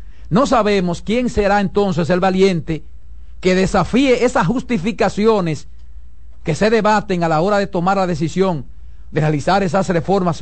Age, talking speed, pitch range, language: 50-69, 145 wpm, 145-210 Hz, Spanish